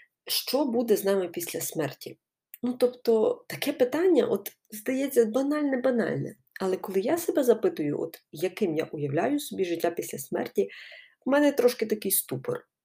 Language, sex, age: Ukrainian, female, 30-49